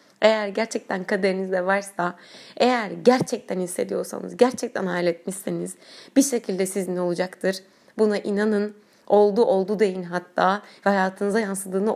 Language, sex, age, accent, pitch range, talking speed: Turkish, female, 30-49, native, 190-235 Hz, 110 wpm